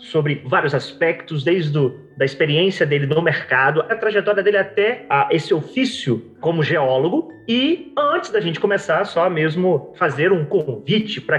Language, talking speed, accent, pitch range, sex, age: Portuguese, 155 wpm, Brazilian, 135-180 Hz, male, 30-49